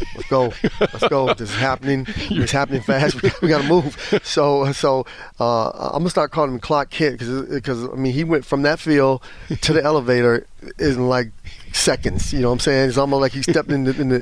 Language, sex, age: English, male, 30-49